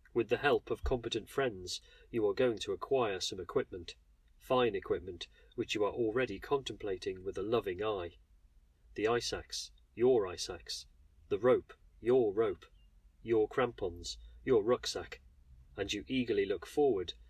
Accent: British